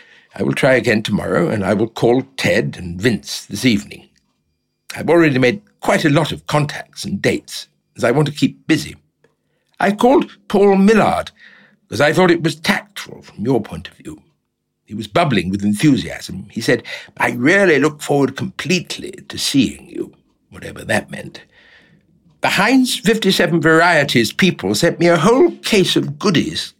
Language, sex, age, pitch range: English, male, 60-79, 150-185 Hz